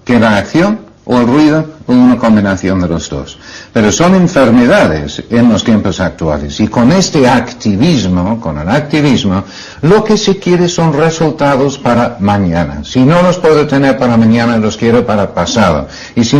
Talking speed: 170 wpm